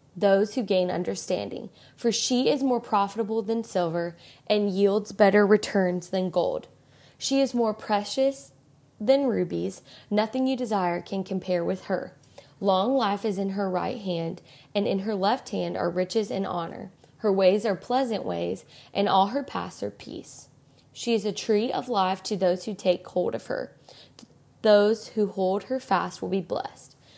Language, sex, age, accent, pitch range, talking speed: English, female, 20-39, American, 180-225 Hz, 170 wpm